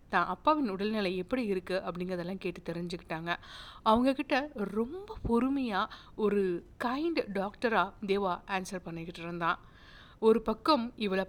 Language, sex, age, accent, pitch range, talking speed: Tamil, female, 60-79, native, 185-245 Hz, 110 wpm